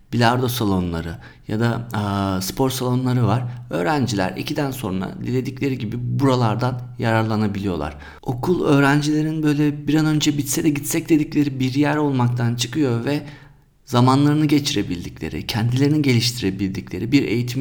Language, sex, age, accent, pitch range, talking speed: Turkish, male, 50-69, native, 100-145 Hz, 120 wpm